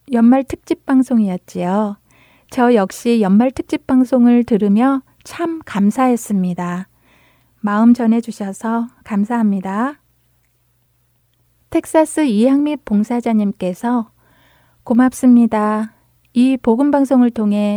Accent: native